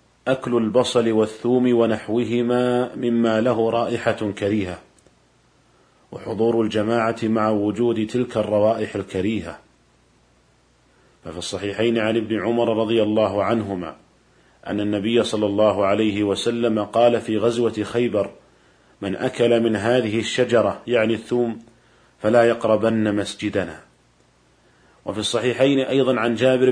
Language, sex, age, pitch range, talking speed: Arabic, male, 40-59, 105-120 Hz, 110 wpm